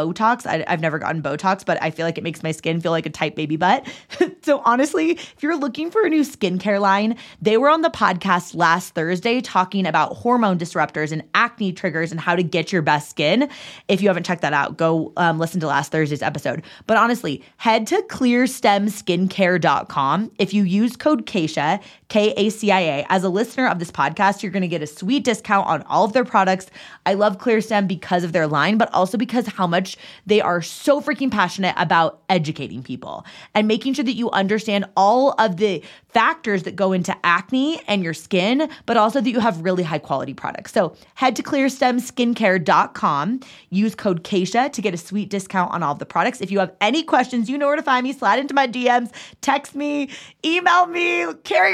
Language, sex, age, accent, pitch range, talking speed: English, female, 20-39, American, 175-245 Hz, 205 wpm